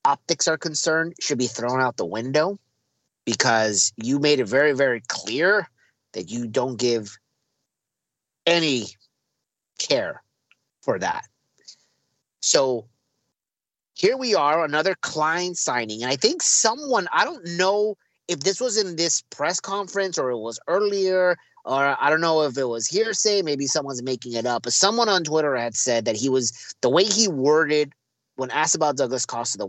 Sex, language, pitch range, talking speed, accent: male, English, 120-180 Hz, 165 wpm, American